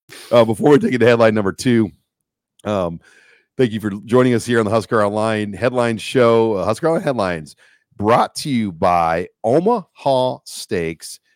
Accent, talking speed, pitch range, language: American, 170 wpm, 100-125 Hz, English